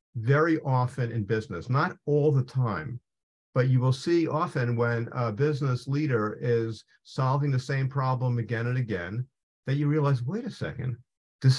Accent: American